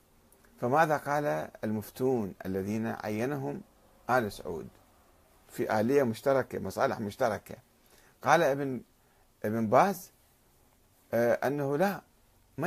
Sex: male